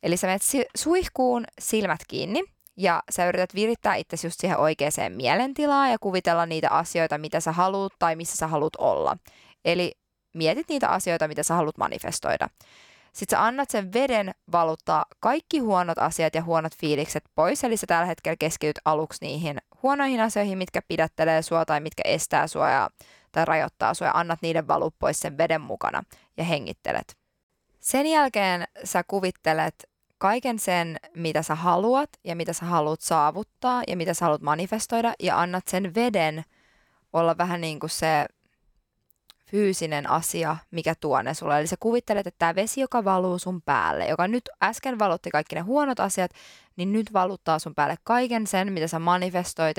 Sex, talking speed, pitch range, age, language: female, 165 wpm, 160-220 Hz, 20-39, Finnish